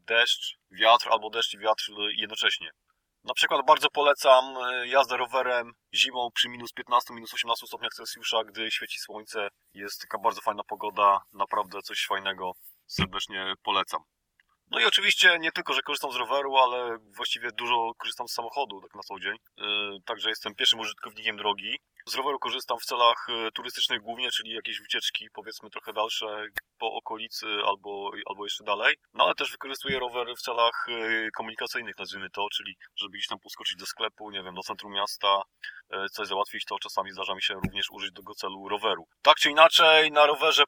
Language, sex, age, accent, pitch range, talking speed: English, male, 20-39, Polish, 100-130 Hz, 175 wpm